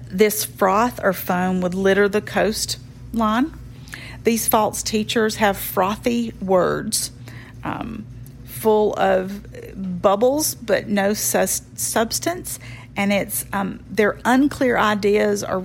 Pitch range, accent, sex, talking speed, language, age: 130-205 Hz, American, female, 115 wpm, English, 40-59